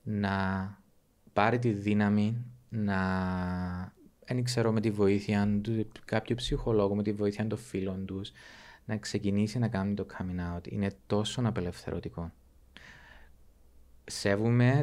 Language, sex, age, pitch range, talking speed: Greek, male, 20-39, 90-105 Hz, 120 wpm